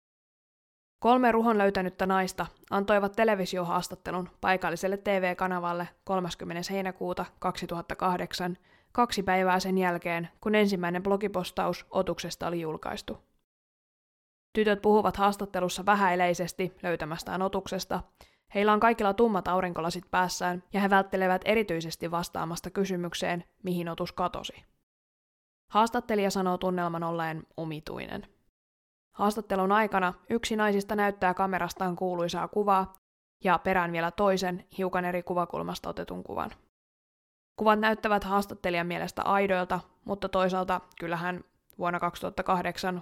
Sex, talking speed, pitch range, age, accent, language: female, 105 wpm, 175-200 Hz, 20-39, native, Finnish